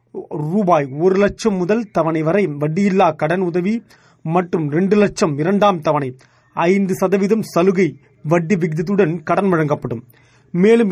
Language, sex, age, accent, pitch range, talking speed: Tamil, male, 30-49, native, 160-200 Hz, 115 wpm